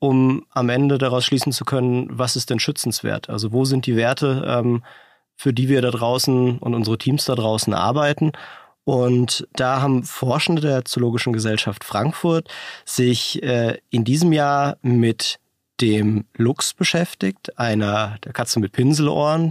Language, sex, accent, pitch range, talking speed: German, male, German, 120-145 Hz, 150 wpm